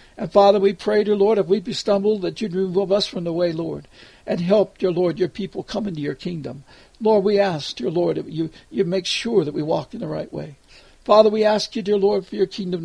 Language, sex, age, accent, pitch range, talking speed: English, male, 60-79, American, 160-200 Hz, 250 wpm